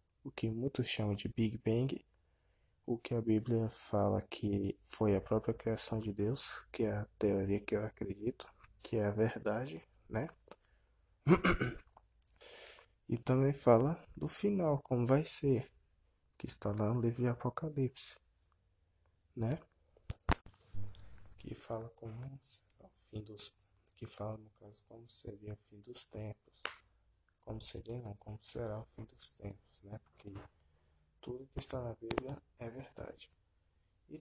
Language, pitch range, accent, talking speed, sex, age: Portuguese, 100-120 Hz, Brazilian, 145 wpm, male, 20-39